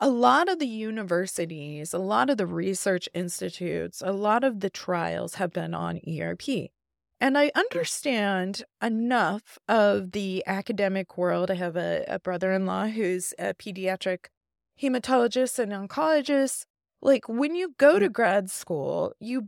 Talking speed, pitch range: 145 wpm, 190-250 Hz